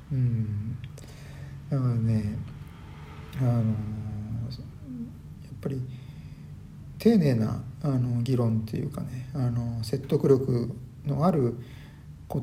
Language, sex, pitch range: Japanese, male, 115-135 Hz